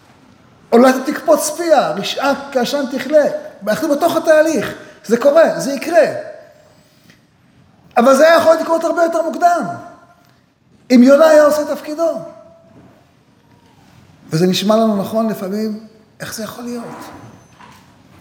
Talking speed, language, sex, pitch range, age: 120 wpm, Hebrew, male, 155-250 Hz, 50-69